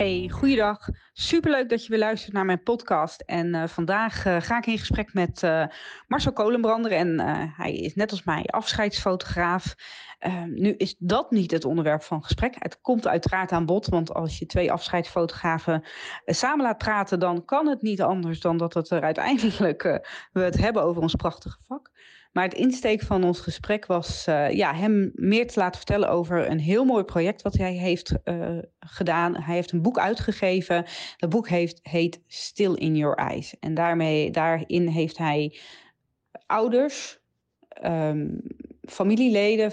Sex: female